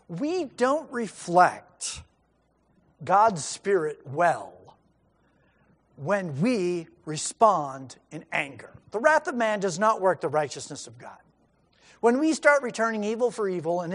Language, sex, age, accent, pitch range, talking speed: English, male, 50-69, American, 165-225 Hz, 130 wpm